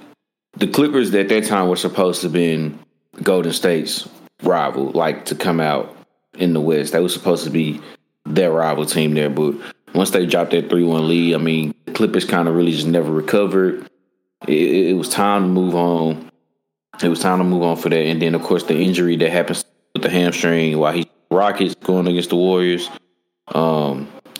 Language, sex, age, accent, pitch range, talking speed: English, male, 20-39, American, 80-90 Hz, 200 wpm